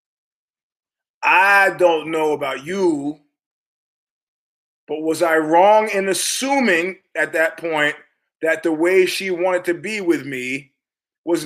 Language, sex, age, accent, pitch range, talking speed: English, male, 30-49, American, 150-190 Hz, 125 wpm